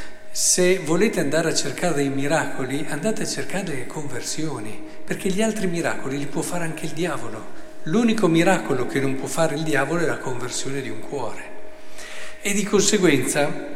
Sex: male